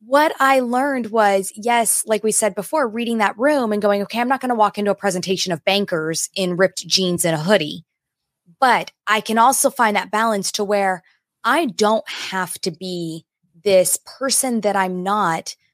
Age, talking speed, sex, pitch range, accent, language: 20-39, 190 wpm, female, 180-230 Hz, American, English